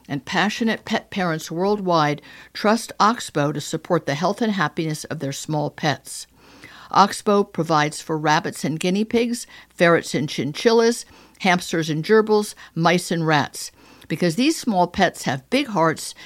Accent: American